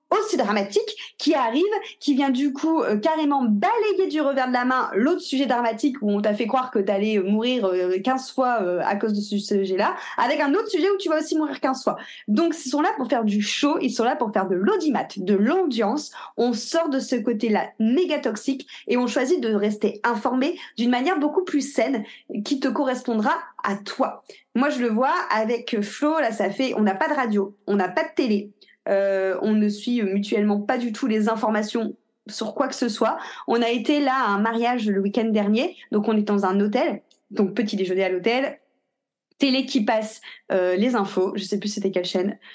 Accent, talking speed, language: French, 220 wpm, French